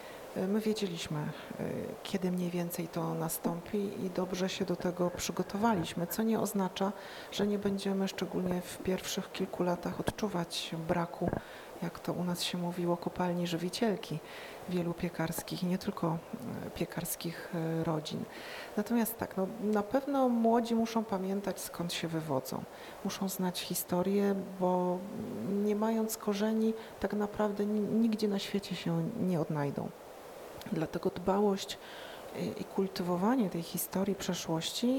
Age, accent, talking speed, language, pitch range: 40-59, native, 125 wpm, Polish, 175-220 Hz